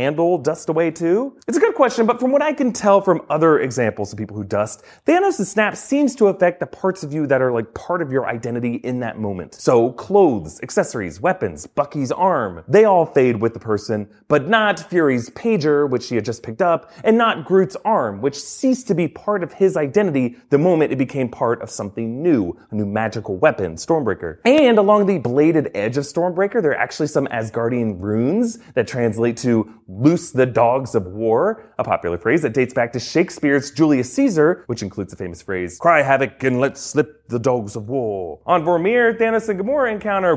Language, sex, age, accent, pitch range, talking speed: English, male, 30-49, American, 120-205 Hz, 205 wpm